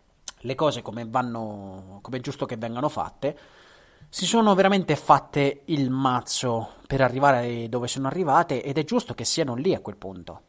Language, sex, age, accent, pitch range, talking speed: Italian, male, 30-49, native, 125-170 Hz, 170 wpm